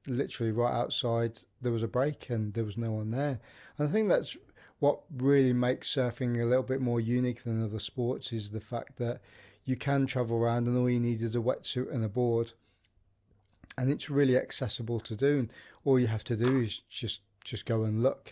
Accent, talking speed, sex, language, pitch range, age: British, 215 wpm, male, English, 115-130 Hz, 30-49